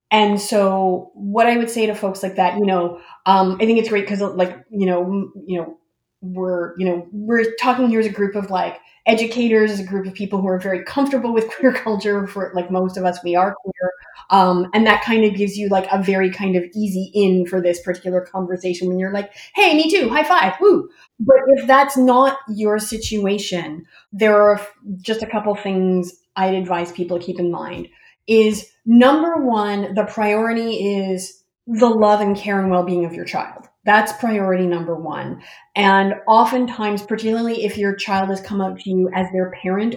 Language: English